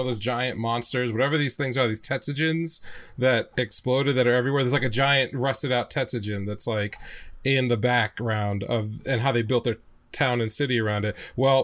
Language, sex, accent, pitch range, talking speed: English, male, American, 120-150 Hz, 200 wpm